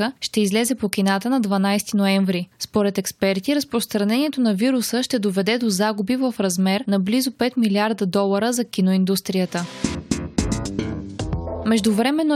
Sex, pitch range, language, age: female, 195-240 Hz, Bulgarian, 20-39